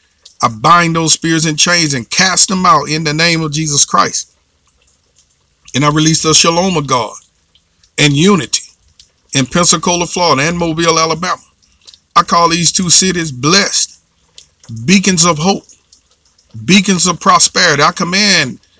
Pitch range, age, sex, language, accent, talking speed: 105-165 Hz, 50-69, male, English, American, 145 wpm